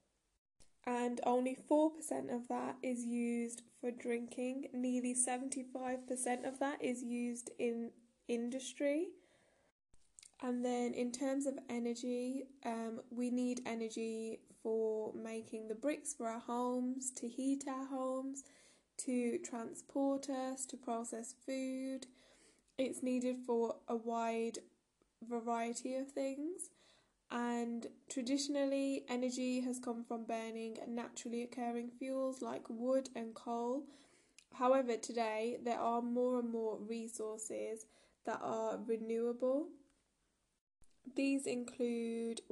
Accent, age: British, 10-29